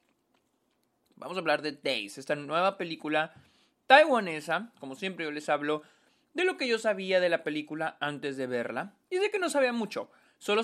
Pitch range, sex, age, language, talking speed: 130-190 Hz, male, 20-39, Spanish, 180 wpm